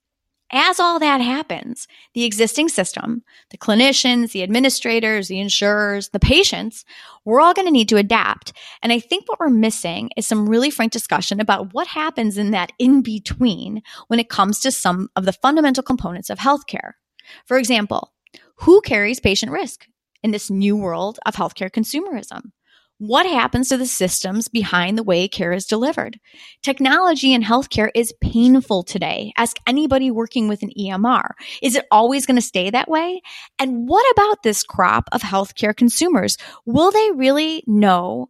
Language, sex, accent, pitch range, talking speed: English, female, American, 205-270 Hz, 170 wpm